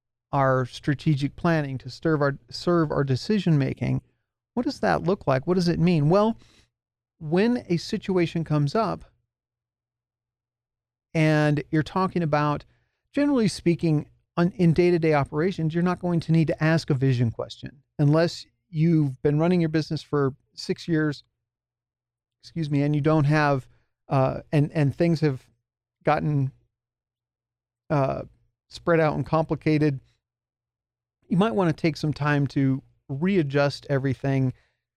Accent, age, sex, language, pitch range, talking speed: American, 40-59, male, English, 120-165 Hz, 135 wpm